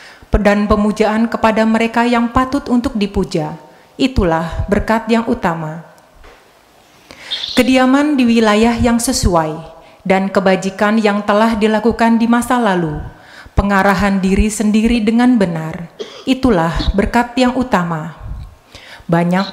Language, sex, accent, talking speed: Indonesian, female, native, 110 wpm